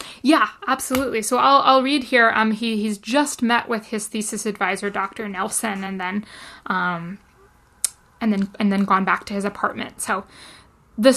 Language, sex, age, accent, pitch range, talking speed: English, female, 20-39, American, 210-245 Hz, 170 wpm